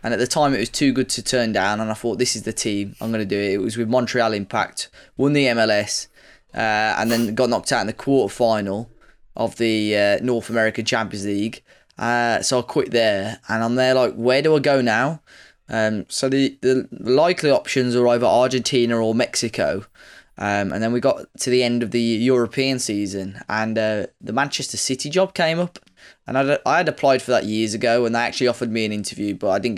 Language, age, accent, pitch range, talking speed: English, 10-29, British, 110-125 Hz, 220 wpm